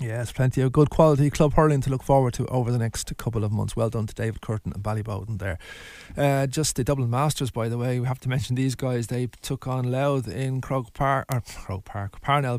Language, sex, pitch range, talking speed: English, male, 115-150 Hz, 240 wpm